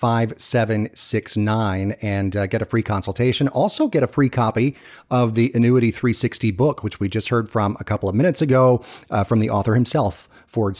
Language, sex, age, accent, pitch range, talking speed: English, male, 30-49, American, 105-125 Hz, 200 wpm